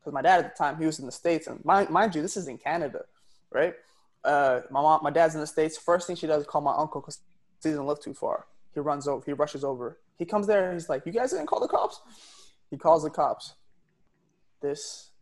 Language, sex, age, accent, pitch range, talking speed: English, male, 20-39, American, 150-200 Hz, 255 wpm